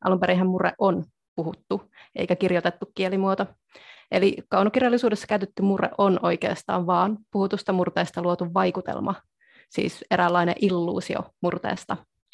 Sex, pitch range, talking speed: female, 180-210 Hz, 105 wpm